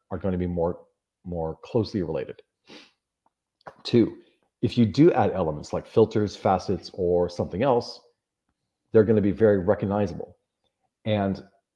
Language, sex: English, male